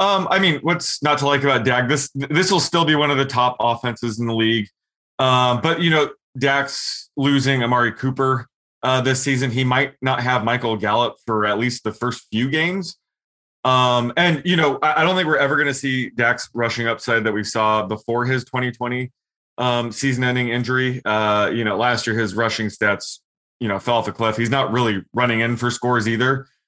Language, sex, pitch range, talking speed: English, male, 110-140 Hz, 210 wpm